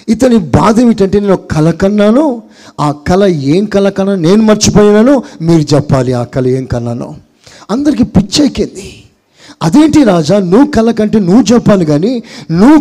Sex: male